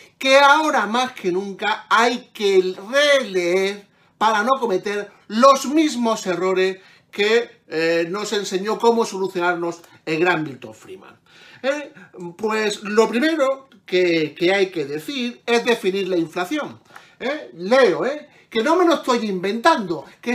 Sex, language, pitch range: male, Spanish, 180-250 Hz